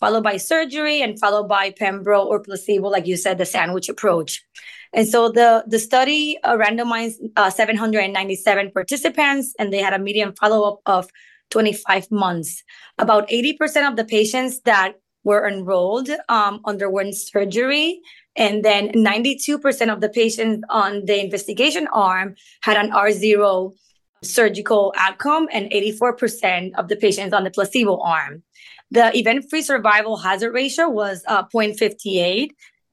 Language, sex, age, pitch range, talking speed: English, female, 20-39, 200-255 Hz, 140 wpm